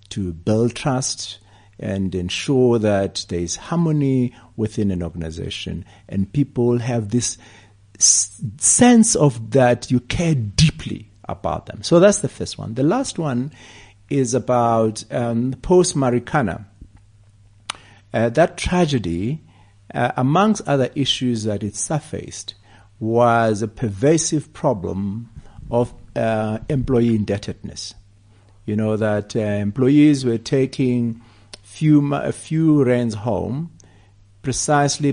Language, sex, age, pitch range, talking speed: English, male, 60-79, 100-130 Hz, 110 wpm